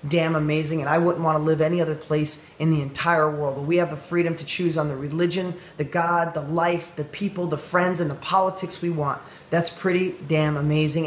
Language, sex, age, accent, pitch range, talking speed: English, male, 30-49, American, 155-190 Hz, 220 wpm